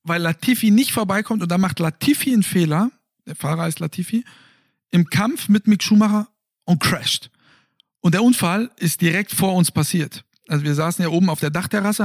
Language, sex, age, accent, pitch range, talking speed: German, male, 50-69, German, 155-200 Hz, 185 wpm